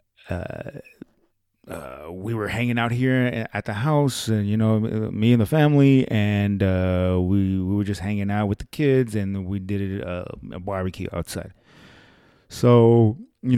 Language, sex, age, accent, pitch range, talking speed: English, male, 30-49, American, 95-130 Hz, 165 wpm